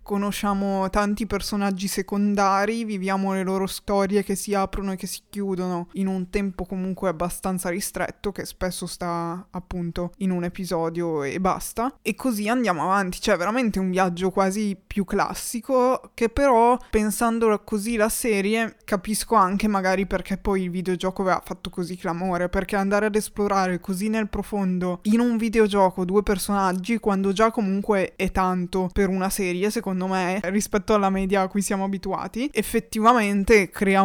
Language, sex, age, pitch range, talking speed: Italian, female, 20-39, 185-210 Hz, 155 wpm